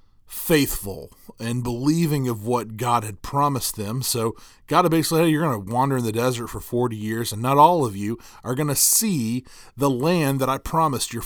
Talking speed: 210 wpm